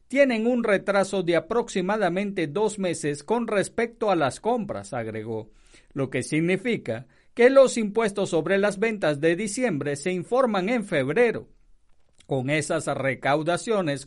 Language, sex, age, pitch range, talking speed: Spanish, male, 50-69, 145-215 Hz, 130 wpm